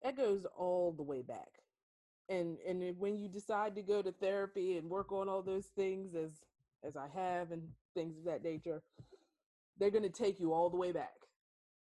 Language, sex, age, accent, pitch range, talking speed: English, female, 20-39, American, 160-200 Hz, 195 wpm